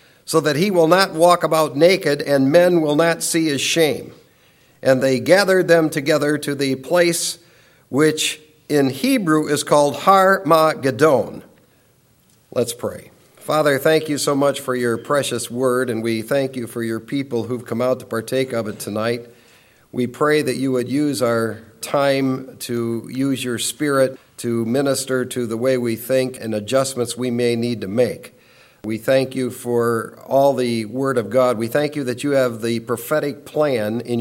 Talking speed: 175 wpm